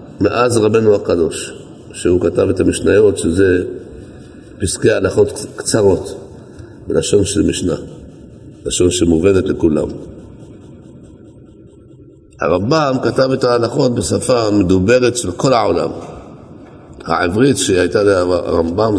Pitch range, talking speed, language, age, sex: 105-130 Hz, 90 wpm, Hebrew, 50-69, male